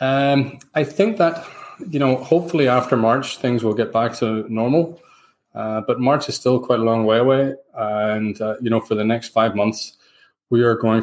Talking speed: 200 wpm